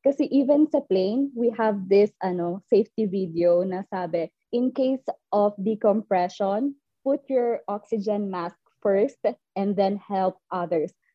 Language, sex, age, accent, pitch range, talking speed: Filipino, female, 20-39, native, 180-225 Hz, 135 wpm